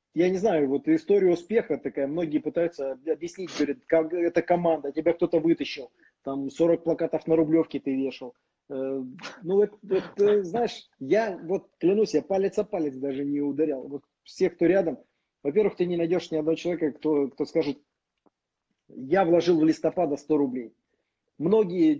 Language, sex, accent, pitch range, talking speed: Russian, male, native, 140-175 Hz, 160 wpm